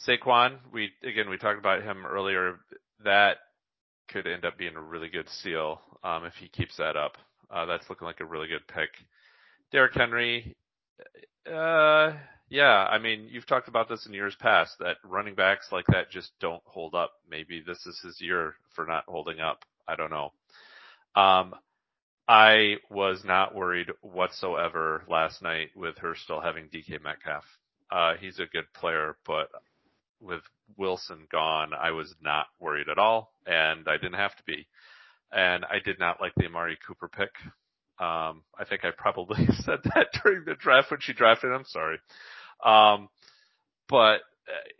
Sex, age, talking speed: male, 30-49, 170 wpm